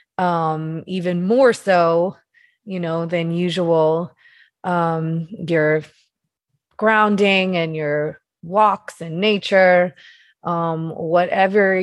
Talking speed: 90 wpm